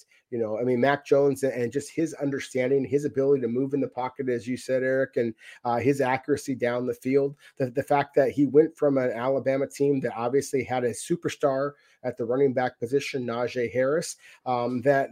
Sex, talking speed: male, 205 wpm